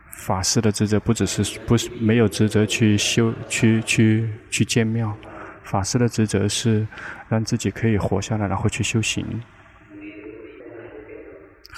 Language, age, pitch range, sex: Chinese, 20-39, 105-115 Hz, male